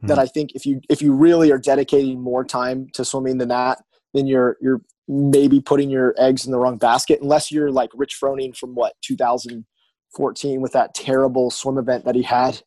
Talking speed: 205 wpm